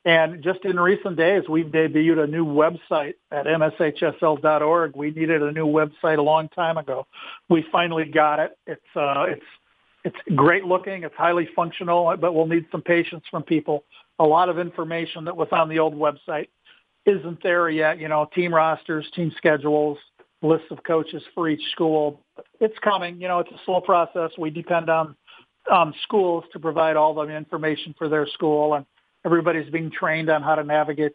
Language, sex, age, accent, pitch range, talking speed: English, male, 50-69, American, 155-175 Hz, 180 wpm